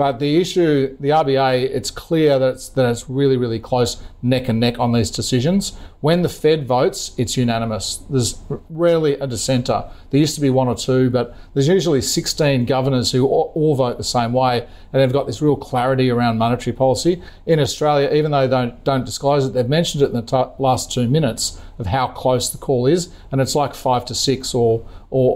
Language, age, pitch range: English, 40-59, 120-140 Hz